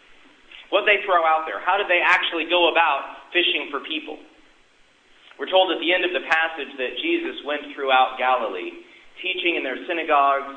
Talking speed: 175 wpm